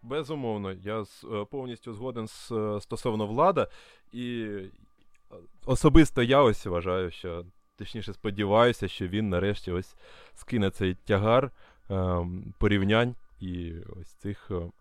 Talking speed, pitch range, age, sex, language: 110 wpm, 100-125 Hz, 20-39, male, Ukrainian